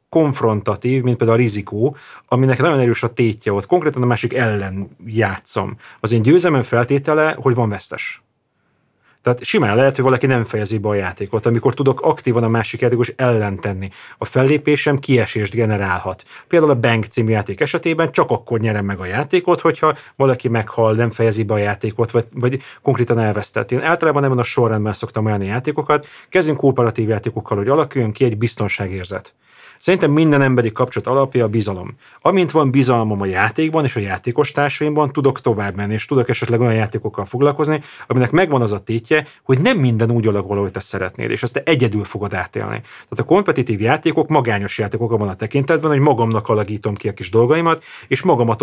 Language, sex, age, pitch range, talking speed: Hungarian, male, 30-49, 110-140 Hz, 180 wpm